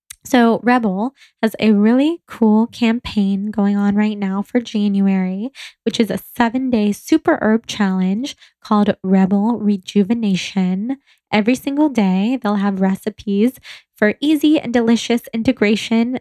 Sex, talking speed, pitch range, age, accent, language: female, 130 wpm, 200-245 Hz, 10-29, American, English